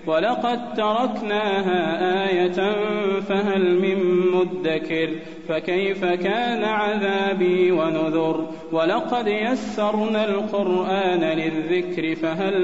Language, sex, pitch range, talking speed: Arabic, male, 160-200 Hz, 70 wpm